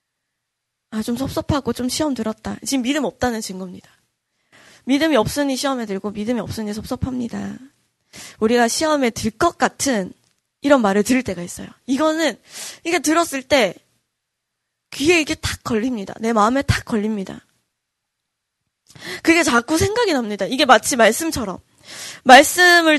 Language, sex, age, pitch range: Korean, female, 20-39, 220-285 Hz